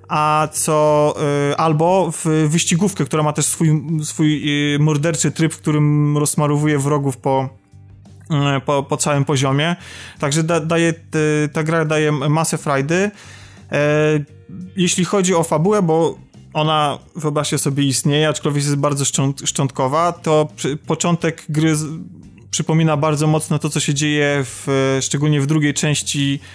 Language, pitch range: Polish, 140-160 Hz